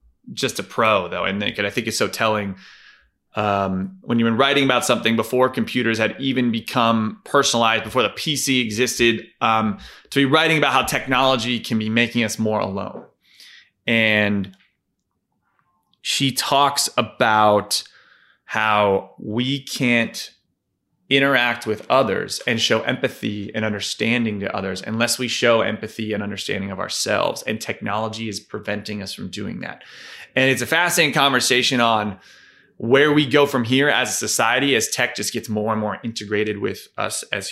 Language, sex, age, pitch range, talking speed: English, male, 20-39, 105-135 Hz, 155 wpm